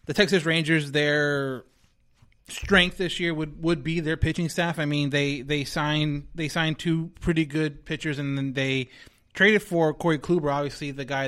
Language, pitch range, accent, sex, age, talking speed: English, 130-160 Hz, American, male, 20-39, 180 wpm